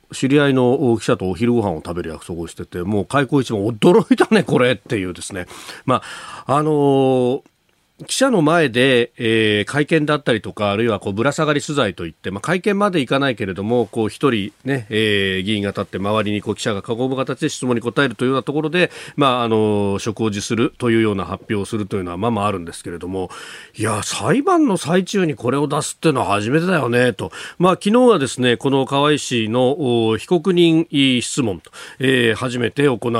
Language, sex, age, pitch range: Japanese, male, 40-59, 105-145 Hz